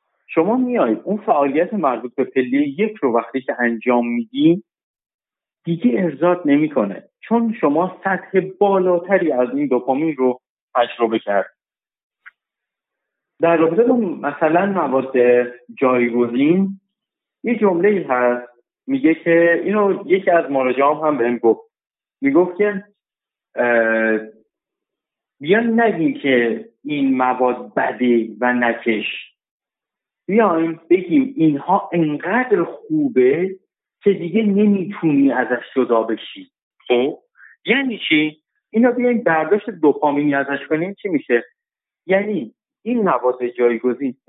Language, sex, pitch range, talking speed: Persian, male, 125-200 Hz, 110 wpm